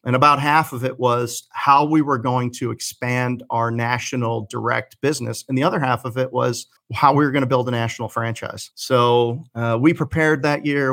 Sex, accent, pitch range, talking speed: male, American, 120-130 Hz, 205 wpm